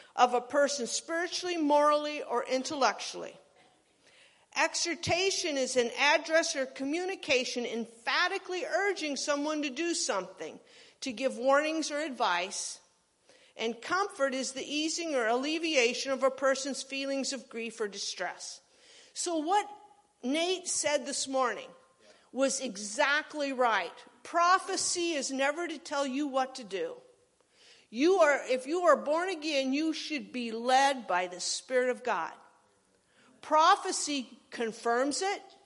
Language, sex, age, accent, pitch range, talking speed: English, female, 50-69, American, 250-340 Hz, 130 wpm